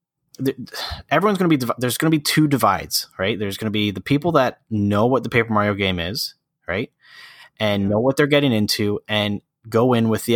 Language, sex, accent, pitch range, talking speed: English, male, American, 100-115 Hz, 215 wpm